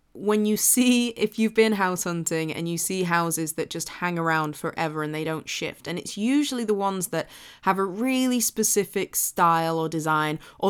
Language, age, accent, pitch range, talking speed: English, 20-39, British, 170-215 Hz, 195 wpm